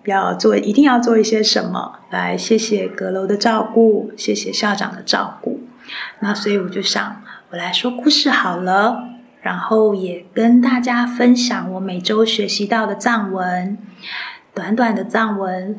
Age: 20-39